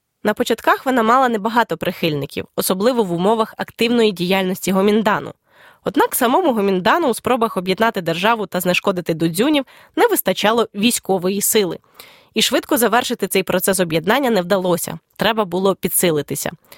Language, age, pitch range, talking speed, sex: Ukrainian, 20-39, 185-240 Hz, 130 wpm, female